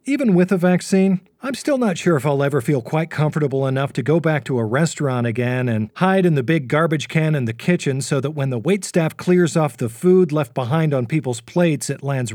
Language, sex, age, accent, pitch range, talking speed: English, male, 40-59, American, 120-160 Hz, 235 wpm